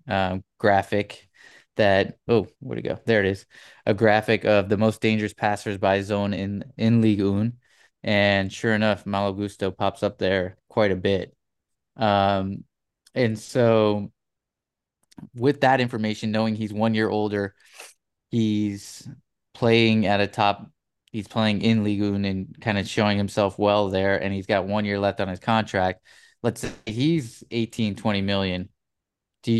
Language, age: English, 20-39